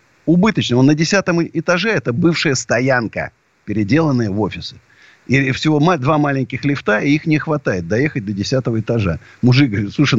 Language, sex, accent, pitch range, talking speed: Russian, male, native, 125-180 Hz, 160 wpm